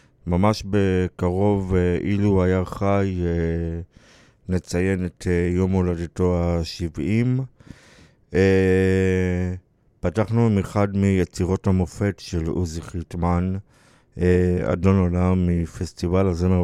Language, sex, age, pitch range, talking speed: Hebrew, male, 50-69, 90-100 Hz, 80 wpm